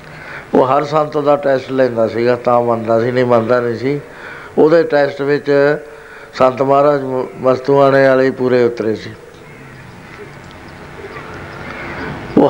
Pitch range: 120-145 Hz